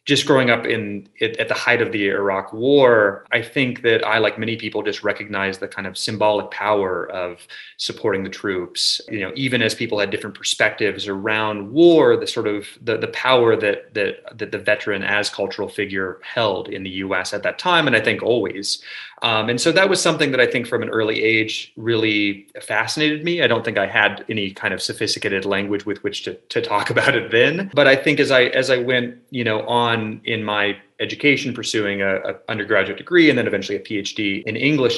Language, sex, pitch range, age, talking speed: English, male, 105-135 Hz, 30-49, 215 wpm